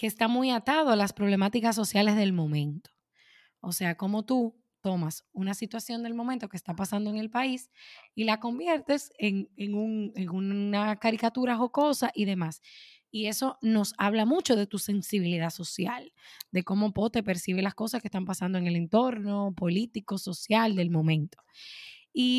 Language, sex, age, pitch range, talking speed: Spanish, female, 10-29, 190-240 Hz, 170 wpm